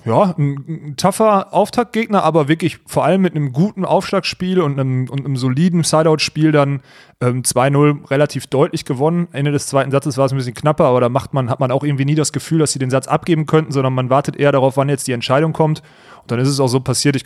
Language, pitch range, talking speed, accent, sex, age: German, 125-150 Hz, 240 wpm, German, male, 30-49